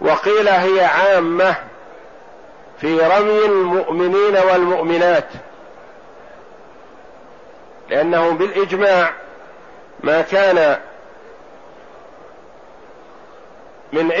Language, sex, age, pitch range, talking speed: Arabic, male, 50-69, 170-195 Hz, 50 wpm